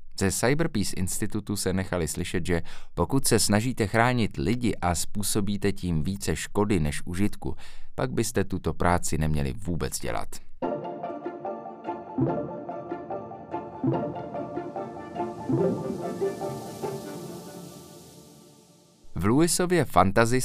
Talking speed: 85 wpm